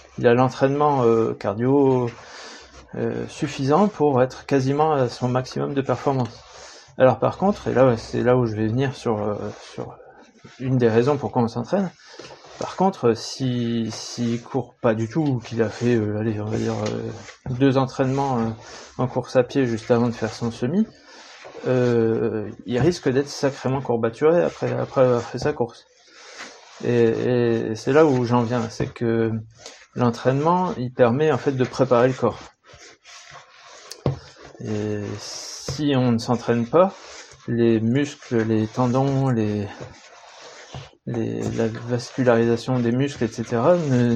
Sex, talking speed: male, 150 wpm